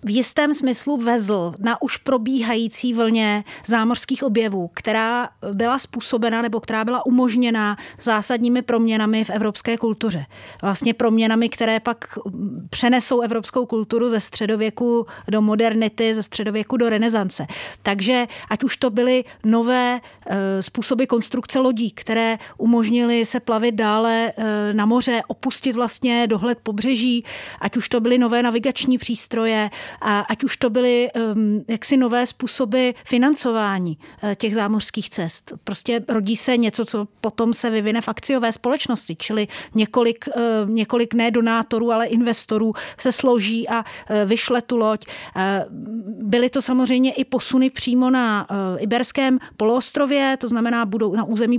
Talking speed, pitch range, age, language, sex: 140 wpm, 220-245 Hz, 30-49, Czech, female